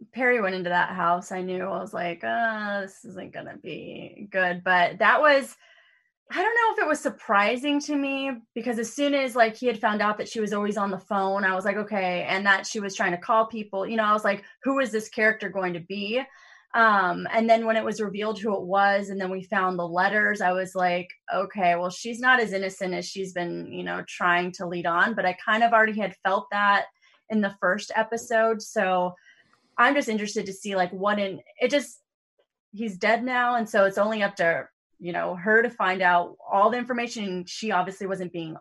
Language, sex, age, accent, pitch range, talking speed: English, female, 20-39, American, 180-220 Hz, 230 wpm